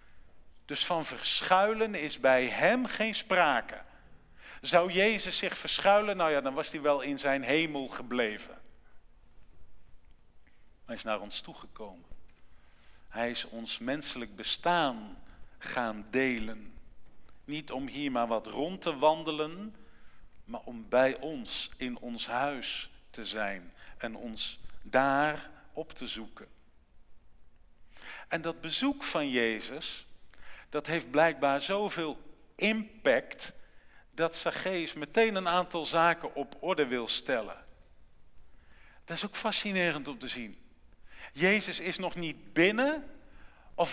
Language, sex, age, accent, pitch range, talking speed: Dutch, male, 50-69, Dutch, 130-190 Hz, 125 wpm